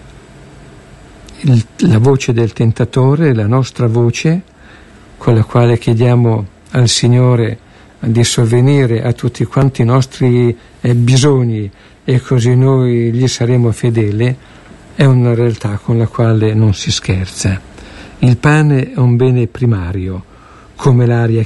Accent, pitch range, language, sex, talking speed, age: native, 110-130 Hz, Italian, male, 125 wpm, 60-79